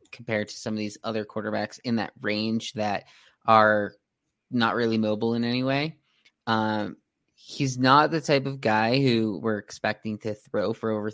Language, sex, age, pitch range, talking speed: English, male, 20-39, 110-130 Hz, 170 wpm